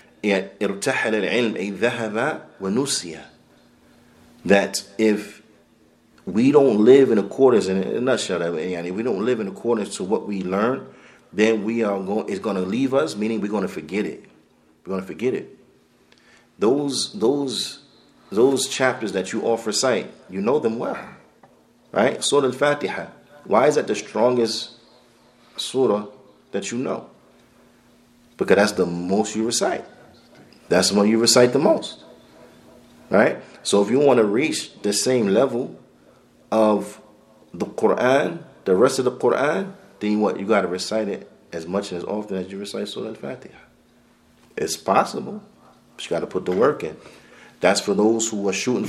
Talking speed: 155 wpm